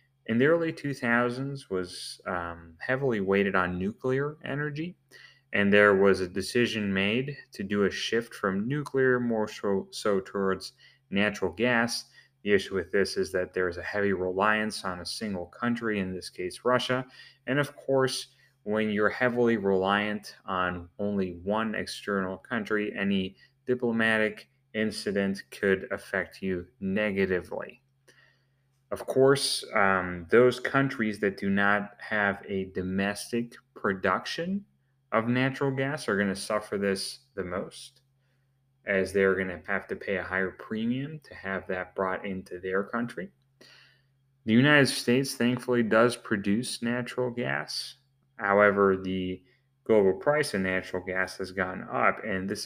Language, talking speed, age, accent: English, 145 wpm, 30-49, American